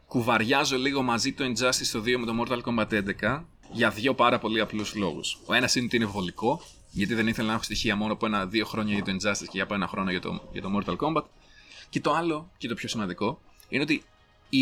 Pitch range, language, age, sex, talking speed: 105-125 Hz, Greek, 30-49, male, 235 wpm